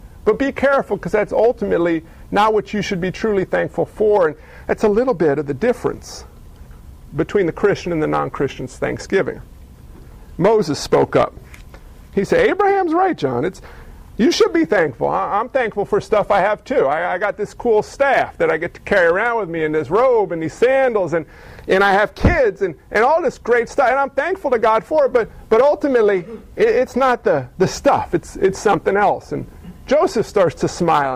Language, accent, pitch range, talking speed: English, American, 165-245 Hz, 200 wpm